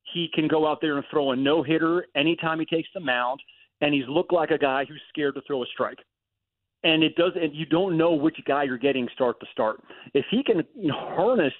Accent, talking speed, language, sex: American, 220 wpm, English, male